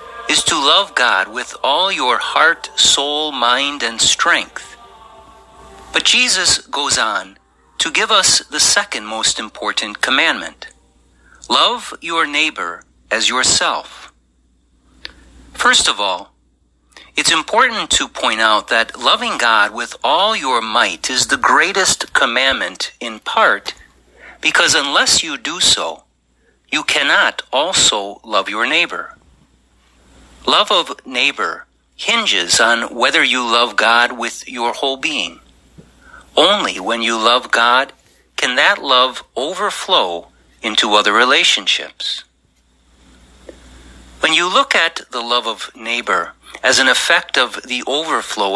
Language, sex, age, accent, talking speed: English, male, 50-69, American, 125 wpm